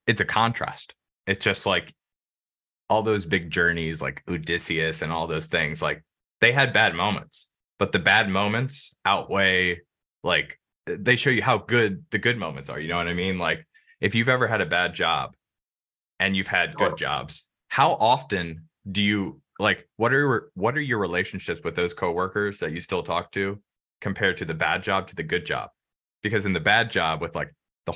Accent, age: American, 20-39